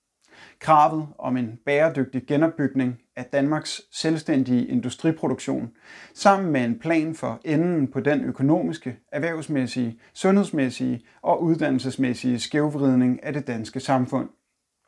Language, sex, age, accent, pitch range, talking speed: Danish, male, 30-49, native, 130-170 Hz, 110 wpm